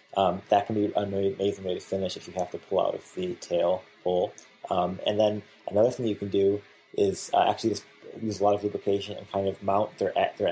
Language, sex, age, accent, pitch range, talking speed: English, male, 20-39, American, 95-110 Hz, 240 wpm